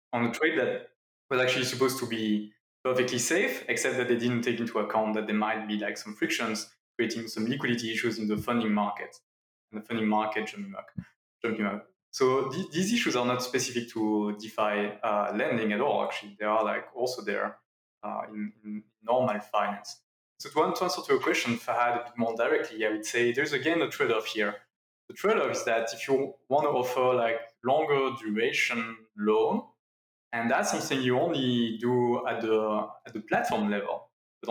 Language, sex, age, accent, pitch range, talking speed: English, male, 20-39, French, 105-125 Hz, 195 wpm